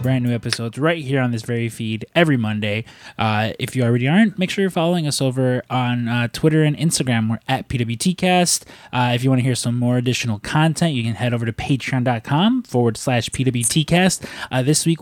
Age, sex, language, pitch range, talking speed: 20-39, male, English, 120-150 Hz, 215 wpm